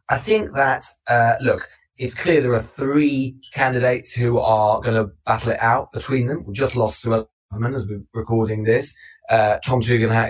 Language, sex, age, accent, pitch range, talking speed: English, male, 30-49, British, 110-130 Hz, 185 wpm